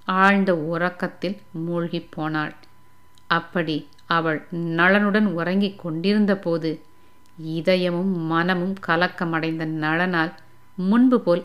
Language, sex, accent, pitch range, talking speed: Tamil, female, native, 165-195 Hz, 70 wpm